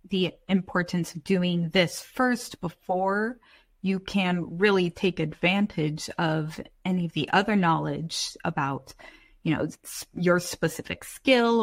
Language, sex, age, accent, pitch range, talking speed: English, female, 20-39, American, 170-215 Hz, 125 wpm